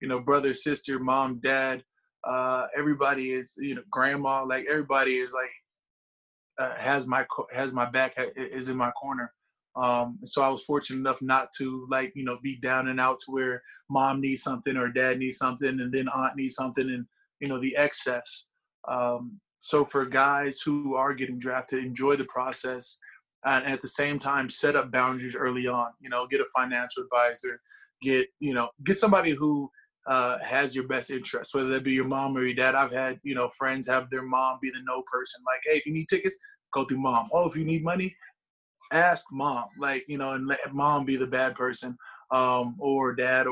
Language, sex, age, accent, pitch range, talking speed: English, male, 20-39, American, 130-140 Hz, 205 wpm